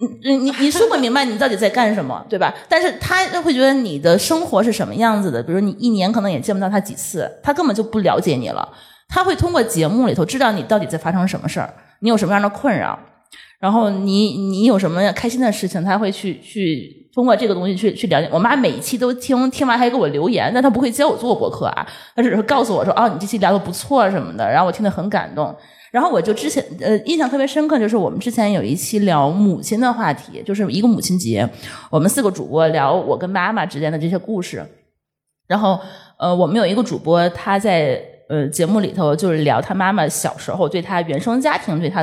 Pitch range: 180-255 Hz